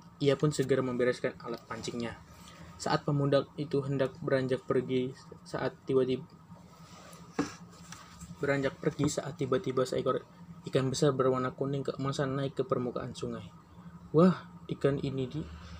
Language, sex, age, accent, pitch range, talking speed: Indonesian, male, 20-39, native, 125-155 Hz, 120 wpm